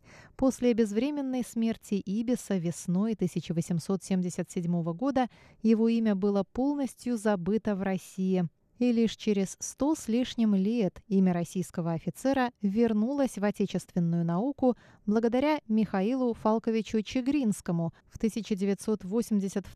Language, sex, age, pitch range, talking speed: Russian, female, 20-39, 185-240 Hz, 105 wpm